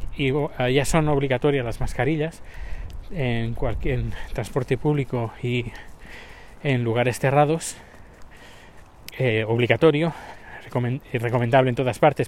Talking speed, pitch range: 100 wpm, 125-160 Hz